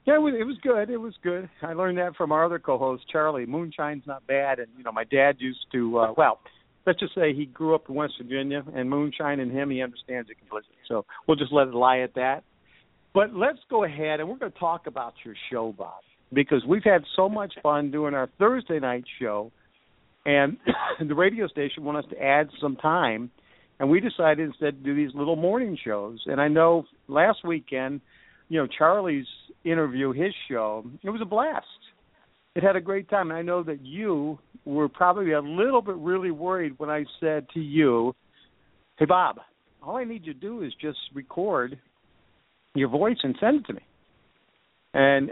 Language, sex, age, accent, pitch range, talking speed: English, male, 50-69, American, 135-180 Hz, 200 wpm